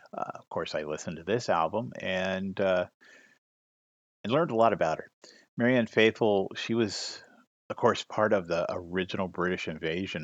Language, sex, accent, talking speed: English, male, American, 165 wpm